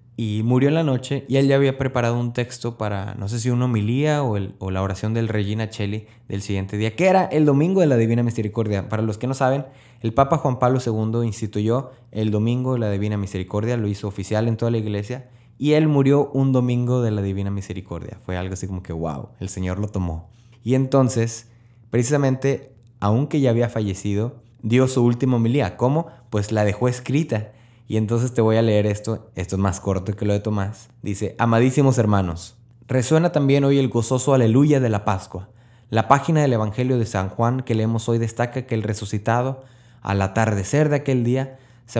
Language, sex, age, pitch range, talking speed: Spanish, male, 20-39, 105-130 Hz, 205 wpm